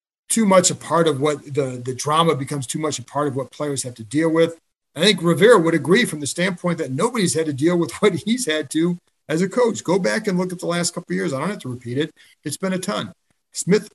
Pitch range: 130-165 Hz